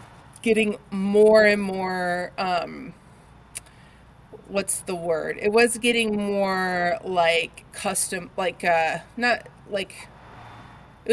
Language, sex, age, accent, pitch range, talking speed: English, female, 30-49, American, 180-225 Hz, 100 wpm